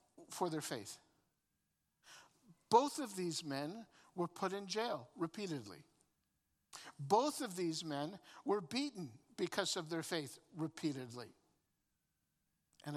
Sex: male